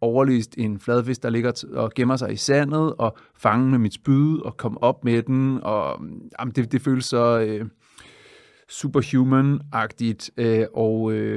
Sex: male